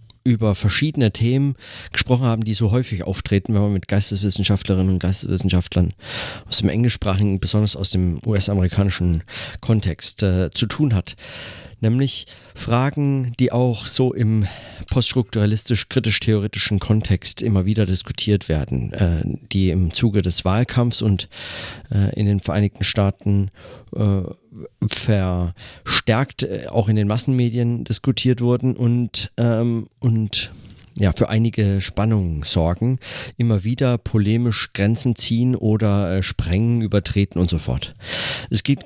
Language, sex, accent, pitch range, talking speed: German, male, German, 100-120 Hz, 125 wpm